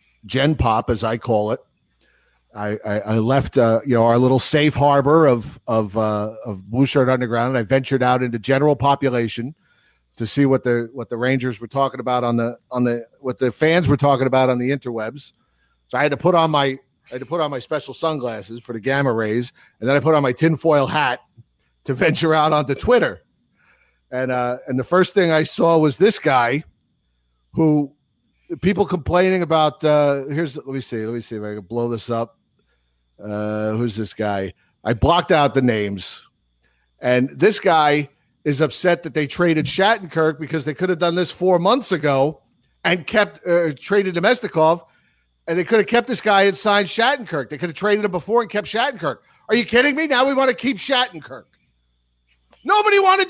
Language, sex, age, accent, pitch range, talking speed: English, male, 40-59, American, 120-170 Hz, 200 wpm